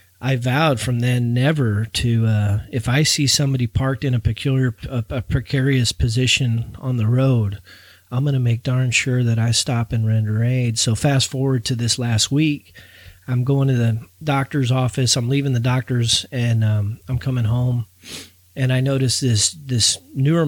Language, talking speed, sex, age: English, 180 wpm, male, 40-59